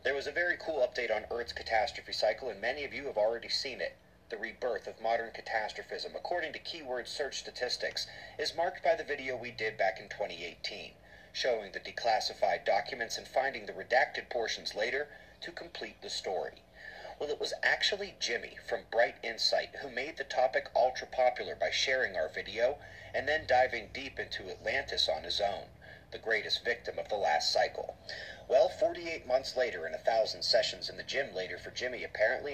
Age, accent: 30-49, American